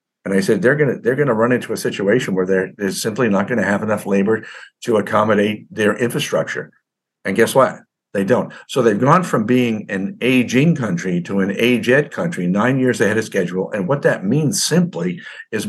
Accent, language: American, English